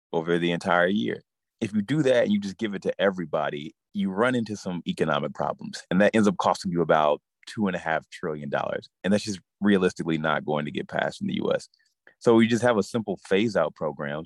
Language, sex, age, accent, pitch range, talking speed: English, male, 30-49, American, 85-115 Hz, 230 wpm